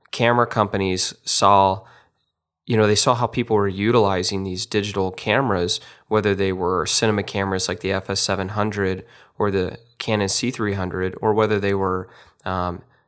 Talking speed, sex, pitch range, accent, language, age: 140 wpm, male, 95-110 Hz, American, English, 20-39